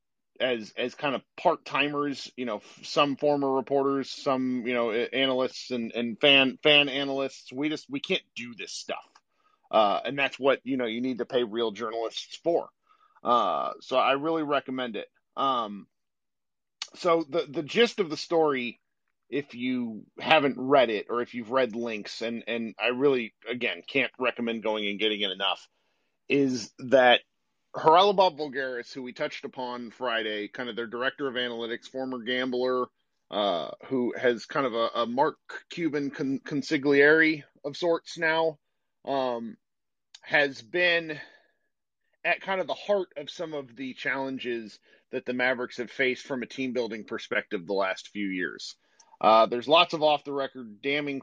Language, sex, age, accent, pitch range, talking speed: English, male, 40-59, American, 120-150 Hz, 160 wpm